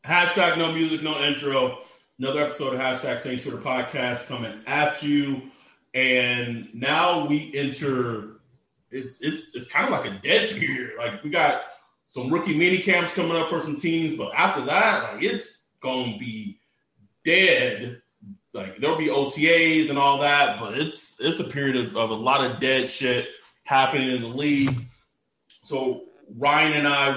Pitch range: 130-165 Hz